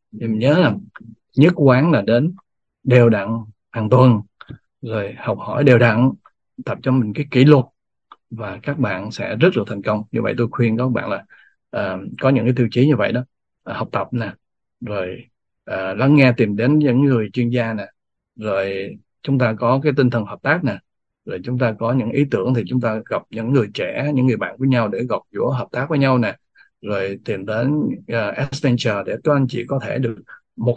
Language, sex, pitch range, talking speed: Vietnamese, male, 115-135 Hz, 215 wpm